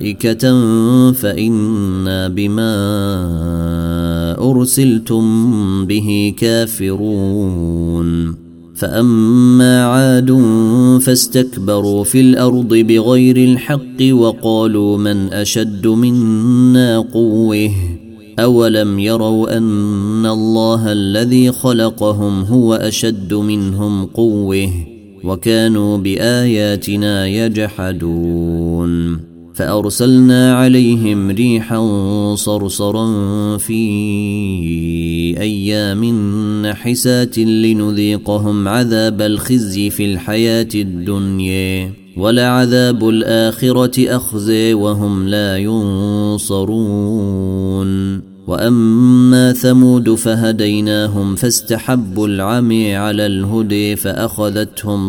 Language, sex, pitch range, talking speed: Arabic, male, 100-115 Hz, 60 wpm